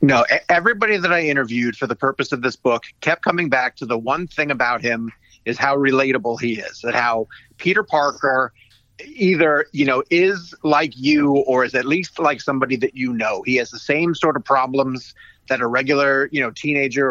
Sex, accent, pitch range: male, American, 125-155 Hz